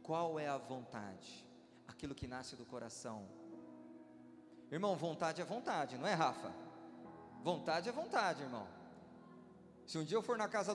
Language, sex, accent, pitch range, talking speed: Portuguese, male, Brazilian, 190-290 Hz, 150 wpm